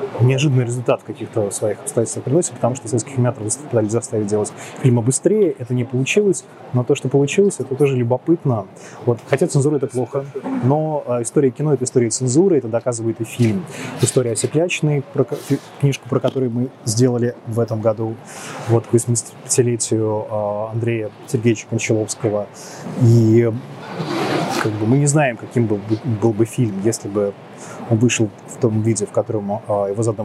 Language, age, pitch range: Russian, 20-39, 115-135 Hz